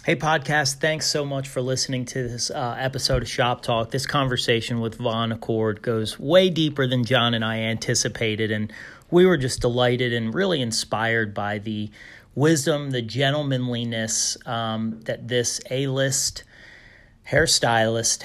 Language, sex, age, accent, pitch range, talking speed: English, male, 30-49, American, 115-150 Hz, 150 wpm